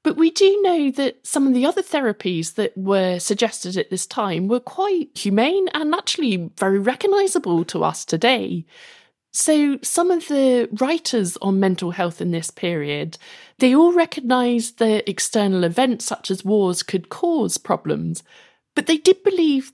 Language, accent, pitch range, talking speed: English, British, 205-315 Hz, 160 wpm